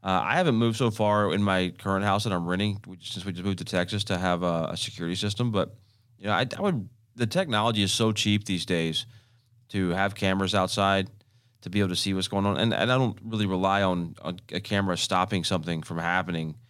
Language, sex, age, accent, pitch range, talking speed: English, male, 30-49, American, 90-110 Hz, 235 wpm